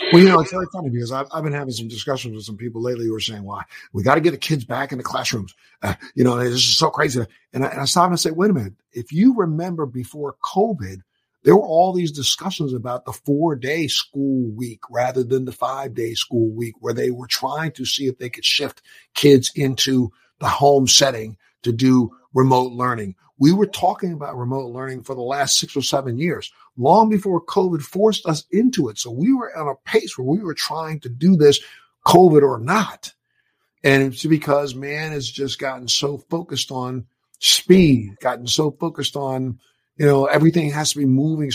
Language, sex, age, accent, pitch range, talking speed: English, male, 50-69, American, 120-155 Hz, 215 wpm